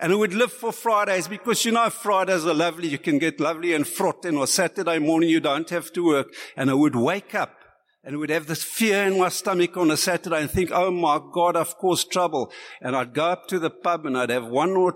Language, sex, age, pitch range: English, male, 60-79, 160-205 Hz